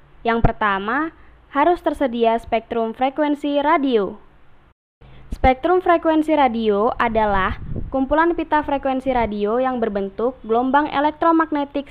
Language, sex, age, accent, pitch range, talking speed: Indonesian, female, 10-29, native, 215-275 Hz, 95 wpm